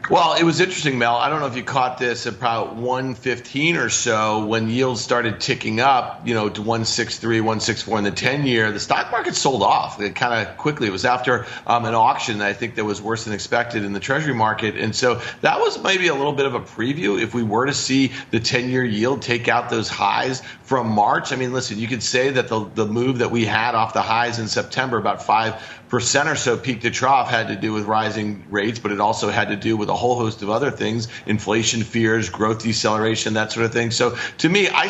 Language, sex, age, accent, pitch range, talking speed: English, male, 40-59, American, 110-140 Hz, 235 wpm